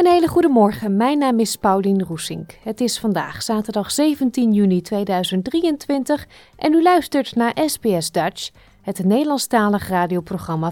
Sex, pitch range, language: female, 190-270 Hz, Dutch